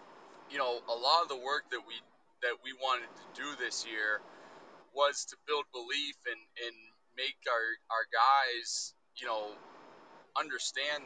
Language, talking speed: English, 155 wpm